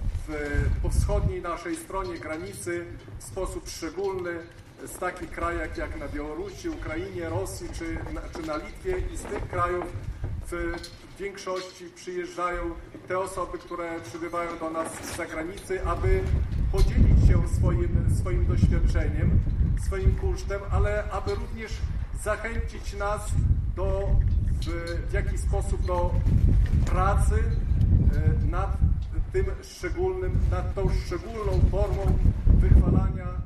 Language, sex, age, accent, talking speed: Polish, male, 40-59, native, 115 wpm